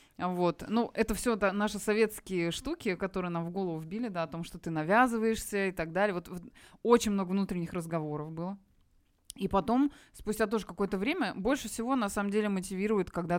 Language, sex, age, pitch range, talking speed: Russian, female, 20-39, 175-225 Hz, 180 wpm